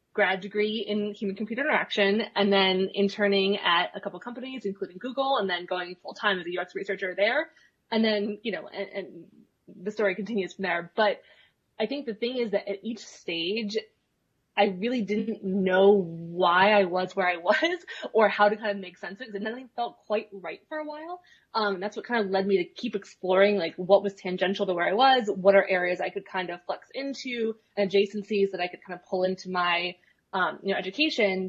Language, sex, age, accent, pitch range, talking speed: English, female, 20-39, American, 185-220 Hz, 215 wpm